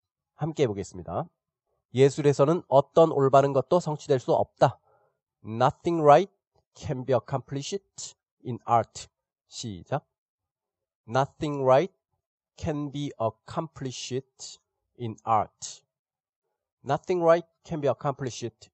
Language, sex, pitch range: Korean, male, 115-150 Hz